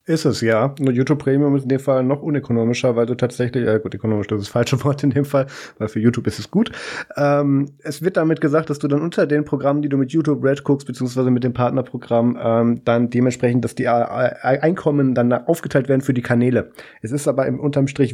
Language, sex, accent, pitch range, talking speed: German, male, German, 115-140 Hz, 230 wpm